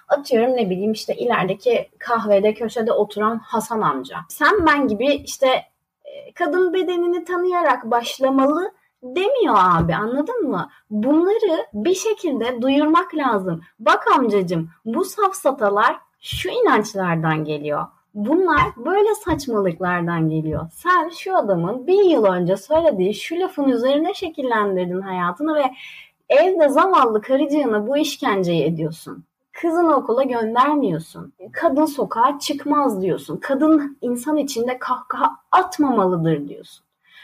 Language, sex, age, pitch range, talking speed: Turkish, female, 30-49, 210-335 Hz, 115 wpm